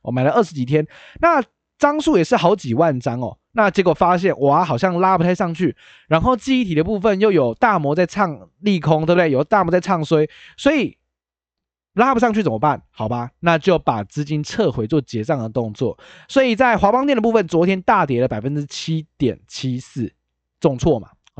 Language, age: Chinese, 20-39